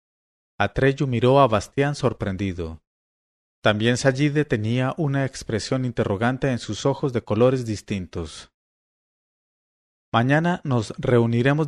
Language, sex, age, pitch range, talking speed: English, male, 40-59, 100-130 Hz, 105 wpm